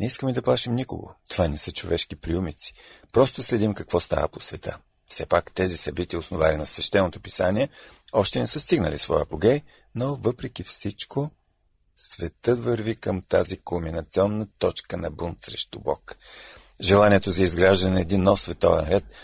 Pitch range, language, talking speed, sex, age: 90-120 Hz, Bulgarian, 160 wpm, male, 50-69